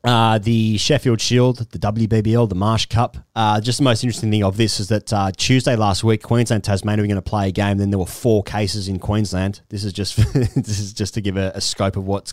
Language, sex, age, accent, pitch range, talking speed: English, male, 30-49, Australian, 105-130 Hz, 250 wpm